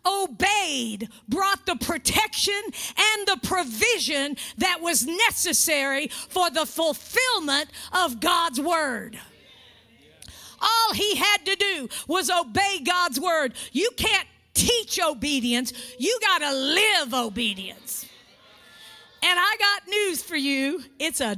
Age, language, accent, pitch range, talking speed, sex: 50-69, English, American, 290-420 Hz, 115 wpm, female